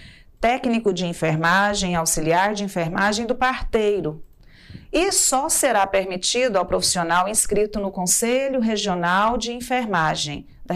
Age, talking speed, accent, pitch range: 40-59, 115 wpm, Brazilian, 180-245 Hz